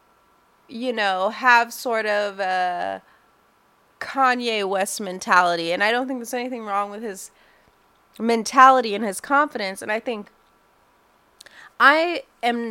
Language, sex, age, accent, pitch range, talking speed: English, female, 20-39, American, 185-230 Hz, 125 wpm